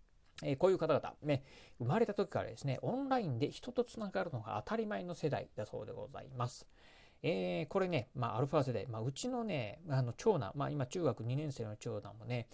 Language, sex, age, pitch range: Japanese, male, 40-59, 115-150 Hz